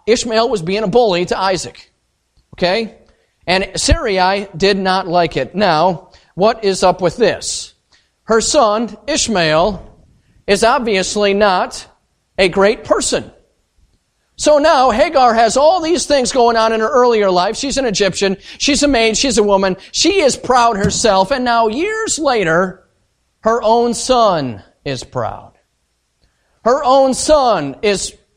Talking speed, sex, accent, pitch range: 145 wpm, male, American, 165-230 Hz